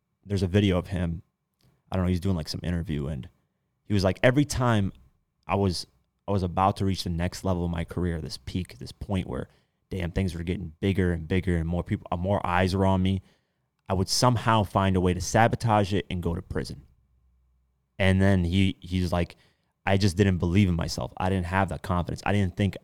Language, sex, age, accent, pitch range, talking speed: English, male, 30-49, American, 90-105 Hz, 225 wpm